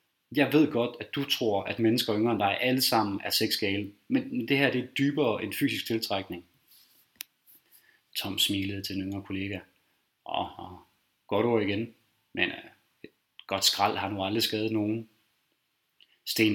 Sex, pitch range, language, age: male, 105-120 Hz, Danish, 20-39